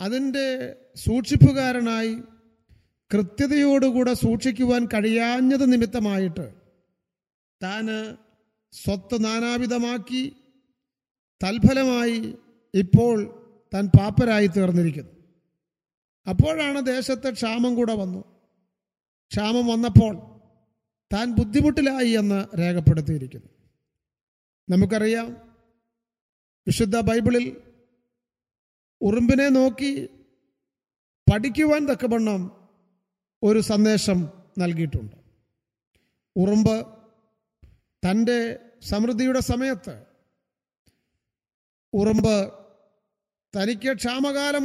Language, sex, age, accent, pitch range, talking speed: Malayalam, male, 50-69, native, 195-245 Hz, 55 wpm